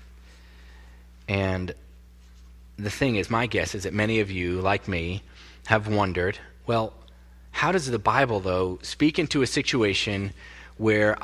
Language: English